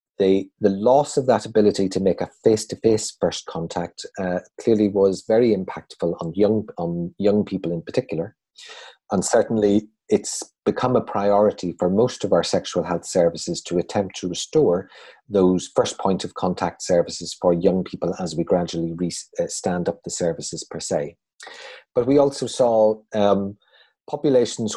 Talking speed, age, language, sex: 160 wpm, 30-49, English, male